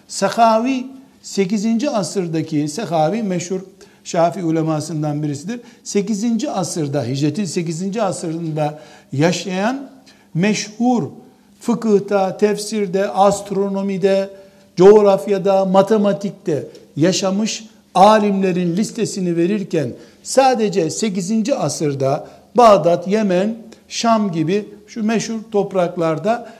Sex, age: male, 60-79